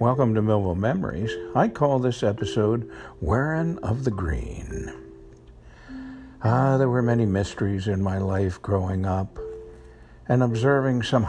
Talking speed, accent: 135 wpm, American